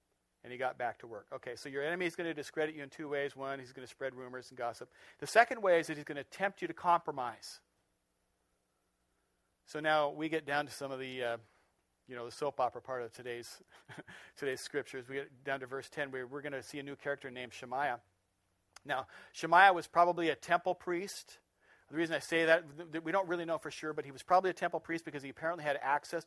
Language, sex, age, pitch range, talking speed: English, male, 40-59, 135-175 Hz, 240 wpm